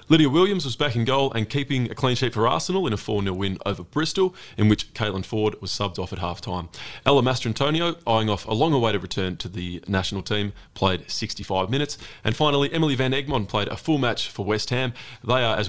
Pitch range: 100-130 Hz